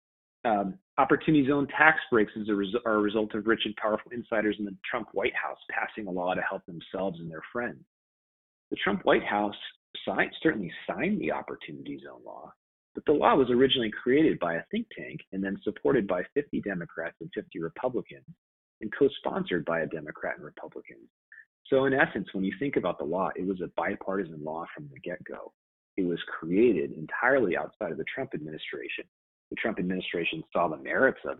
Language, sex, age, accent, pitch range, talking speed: English, male, 40-59, American, 90-120 Hz, 185 wpm